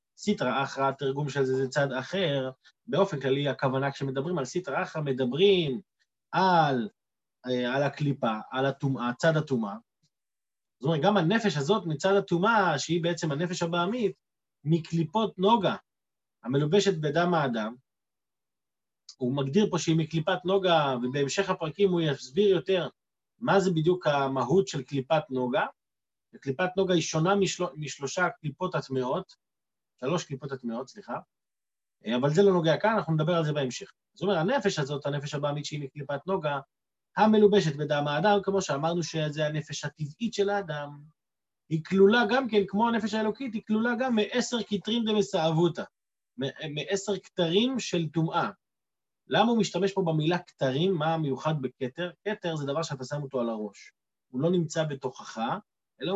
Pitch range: 140-195 Hz